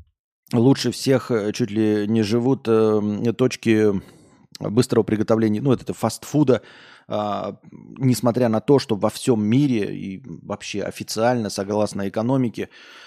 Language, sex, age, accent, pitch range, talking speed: Russian, male, 30-49, native, 105-125 Hz, 115 wpm